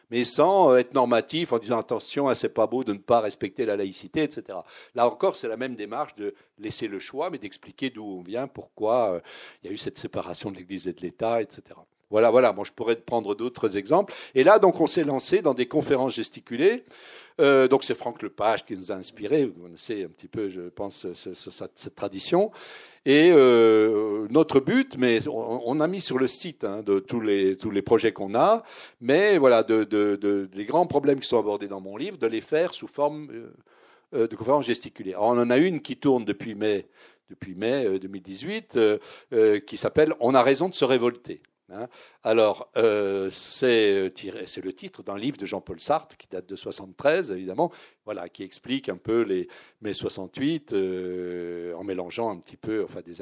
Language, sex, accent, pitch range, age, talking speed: French, male, French, 100-155 Hz, 60-79, 210 wpm